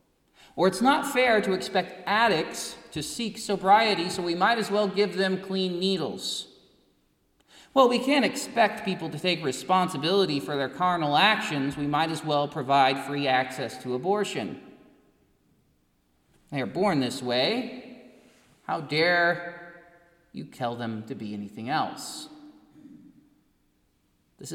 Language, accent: English, American